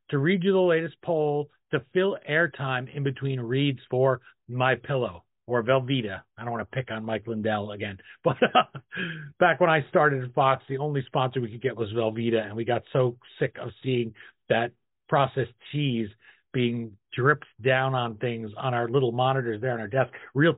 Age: 40-59